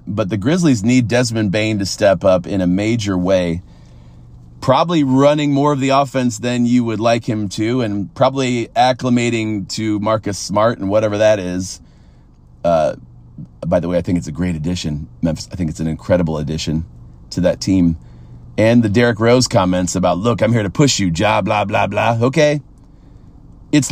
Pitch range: 90-135 Hz